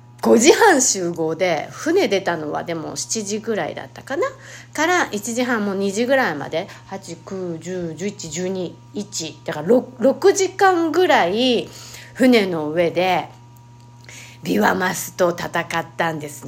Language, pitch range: Japanese, 165-245 Hz